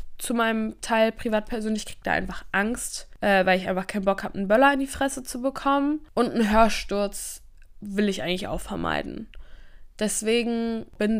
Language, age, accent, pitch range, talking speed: German, 10-29, German, 195-245 Hz, 170 wpm